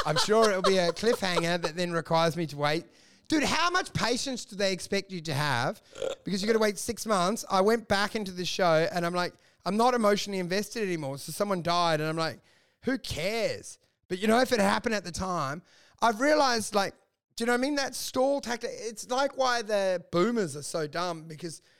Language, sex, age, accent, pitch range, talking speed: English, male, 30-49, Australian, 180-245 Hz, 225 wpm